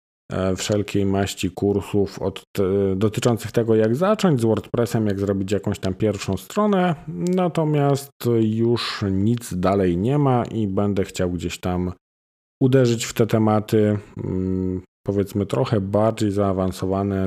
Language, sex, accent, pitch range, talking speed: Polish, male, native, 95-115 Hz, 120 wpm